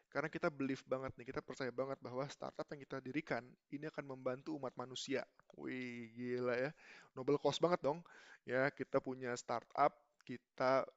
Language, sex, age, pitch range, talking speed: Indonesian, male, 20-39, 125-145 Hz, 165 wpm